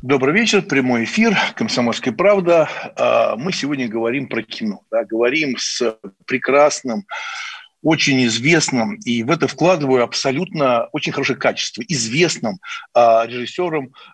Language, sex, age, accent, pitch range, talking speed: Russian, male, 60-79, native, 125-180 Hz, 115 wpm